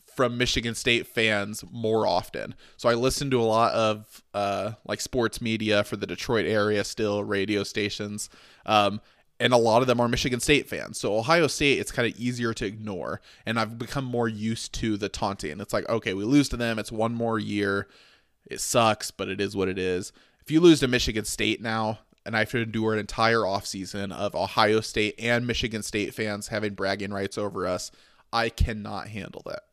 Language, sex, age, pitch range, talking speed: English, male, 20-39, 100-115 Hz, 205 wpm